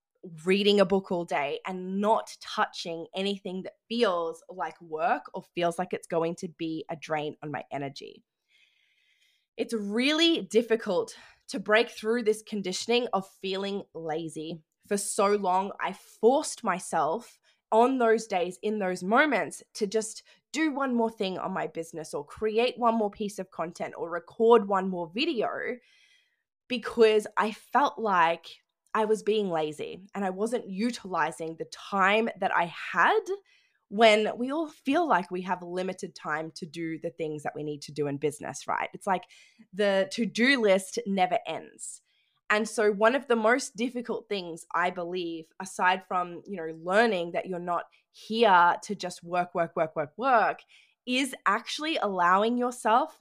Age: 10-29